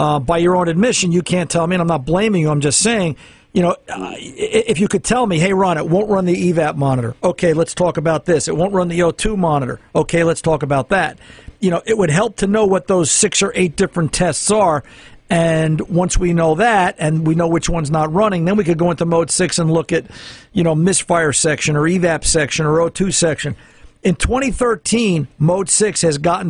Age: 50-69